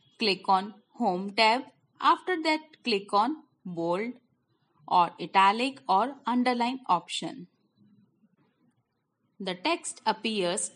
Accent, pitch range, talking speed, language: Indian, 190-275 Hz, 95 wpm, English